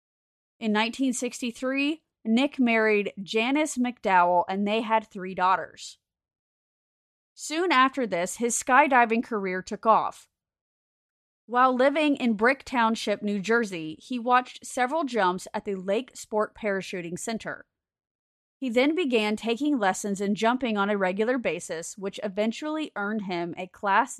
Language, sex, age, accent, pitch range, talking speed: English, female, 30-49, American, 200-255 Hz, 130 wpm